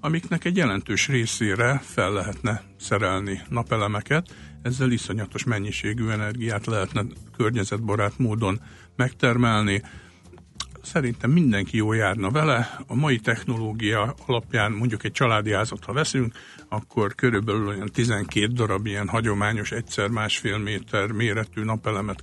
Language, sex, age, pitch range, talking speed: Hungarian, male, 60-79, 105-125 Hz, 115 wpm